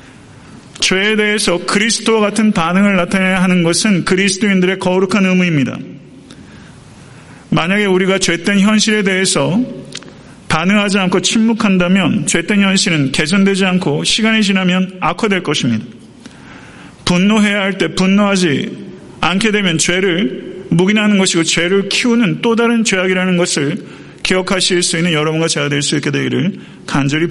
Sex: male